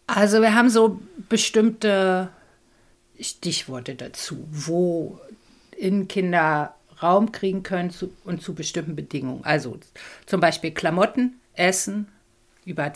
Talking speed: 105 wpm